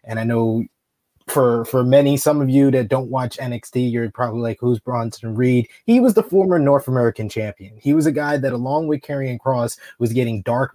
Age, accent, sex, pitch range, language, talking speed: 20-39, American, male, 120-145 Hz, English, 210 wpm